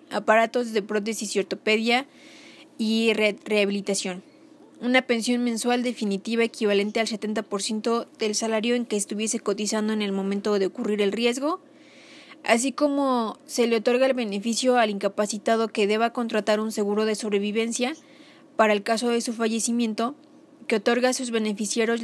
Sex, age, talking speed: female, 20-39, 145 wpm